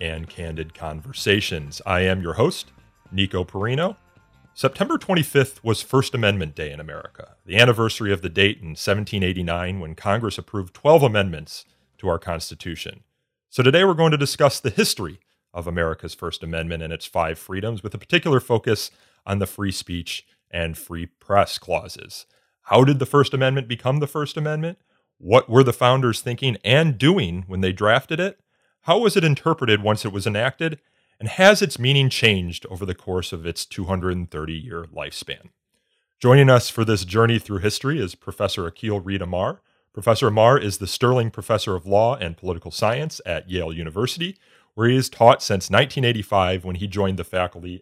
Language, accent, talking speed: English, American, 170 wpm